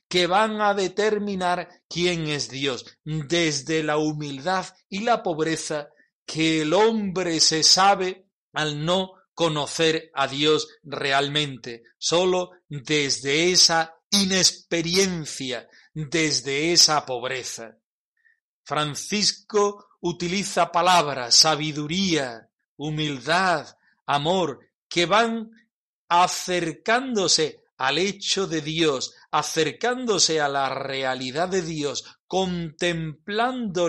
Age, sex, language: 40-59, male, Spanish